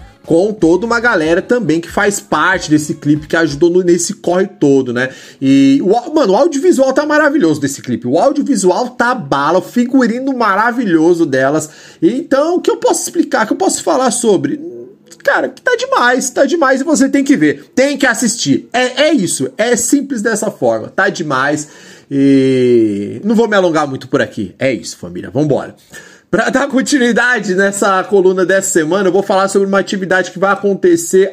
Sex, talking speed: male, 180 wpm